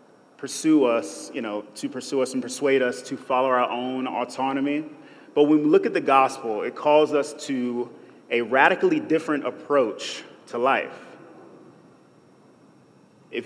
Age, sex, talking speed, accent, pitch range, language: 30-49, male, 145 wpm, American, 115-165 Hz, English